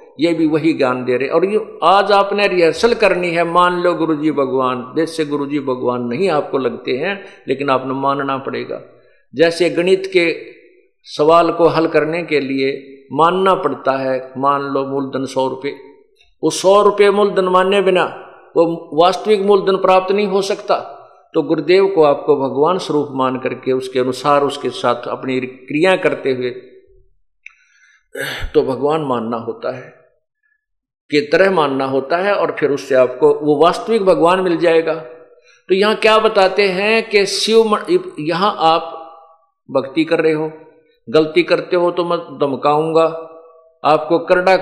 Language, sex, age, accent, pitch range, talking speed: Hindi, male, 50-69, native, 135-185 Hz, 155 wpm